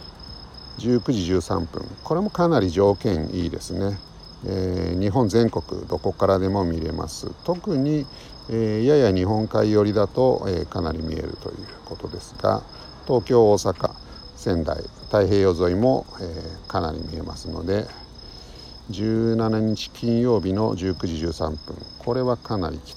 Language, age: Japanese, 50-69